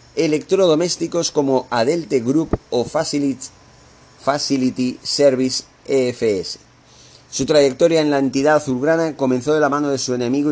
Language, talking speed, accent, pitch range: Spanish, 125 wpm, Spanish, 130-150 Hz